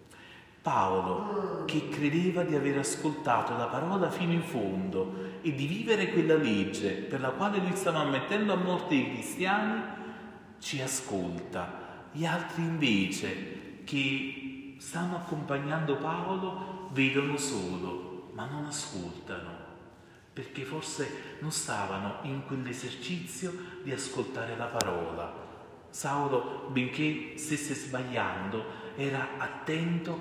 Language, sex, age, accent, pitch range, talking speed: Italian, male, 40-59, native, 130-170 Hz, 110 wpm